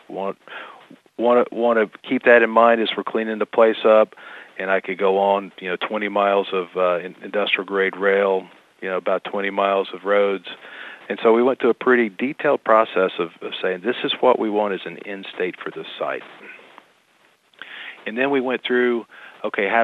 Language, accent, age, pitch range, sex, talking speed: English, American, 40-59, 95-110 Hz, male, 205 wpm